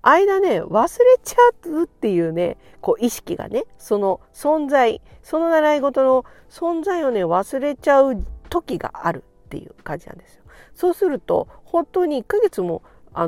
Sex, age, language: female, 50-69, Japanese